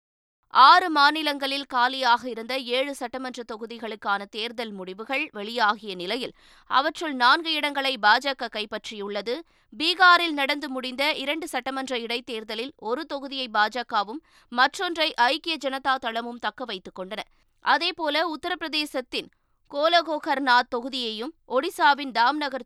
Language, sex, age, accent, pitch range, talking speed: Tamil, female, 20-39, native, 235-300 Hz, 100 wpm